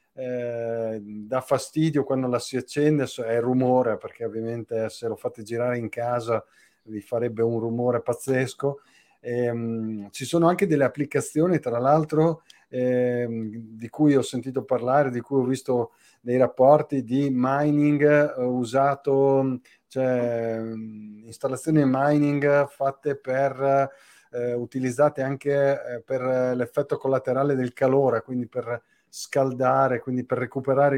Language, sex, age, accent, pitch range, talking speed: Italian, male, 30-49, native, 115-135 Hz, 125 wpm